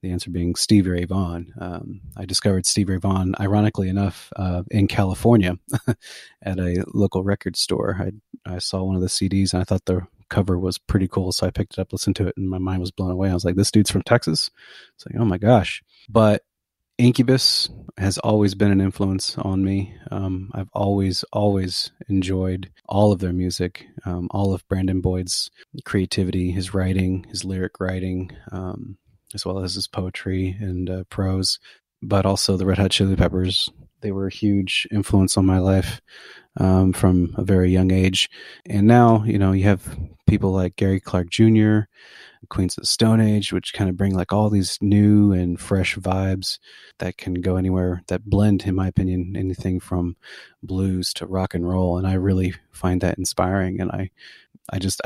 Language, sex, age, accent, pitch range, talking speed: English, male, 30-49, American, 90-100 Hz, 190 wpm